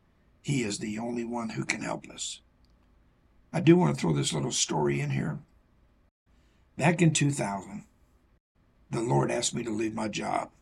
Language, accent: English, American